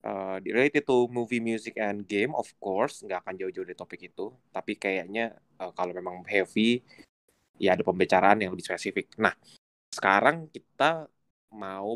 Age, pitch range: 20-39, 95-115 Hz